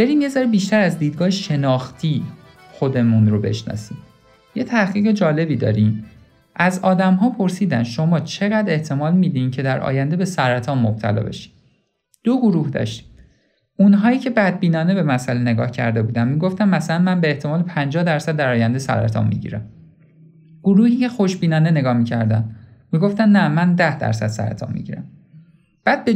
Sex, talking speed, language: male, 150 wpm, Persian